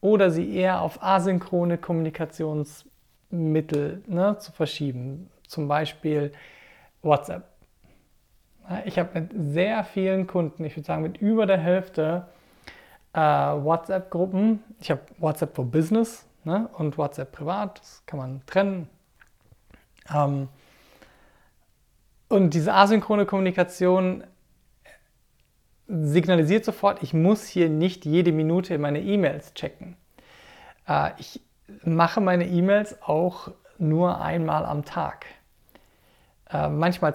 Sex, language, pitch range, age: male, German, 155-190 Hz, 40-59